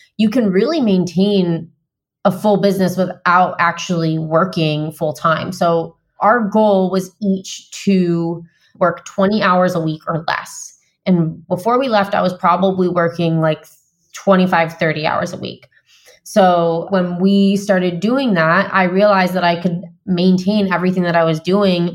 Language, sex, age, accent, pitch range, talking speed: English, female, 20-39, American, 165-195 Hz, 155 wpm